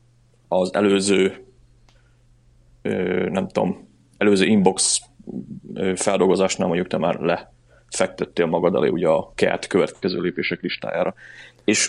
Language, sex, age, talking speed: Hungarian, male, 30-49, 100 wpm